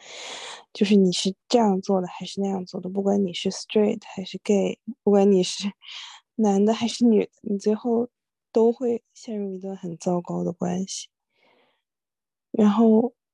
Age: 20-39